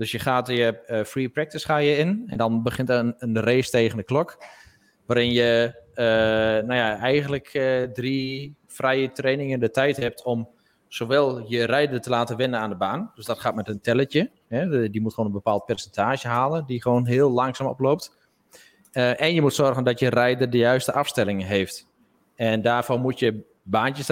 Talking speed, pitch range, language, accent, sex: 195 wpm, 115-135 Hz, Dutch, Dutch, male